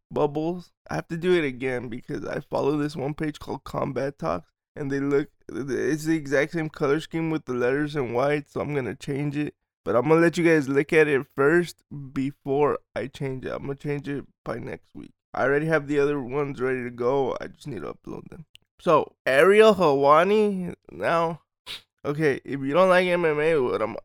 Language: English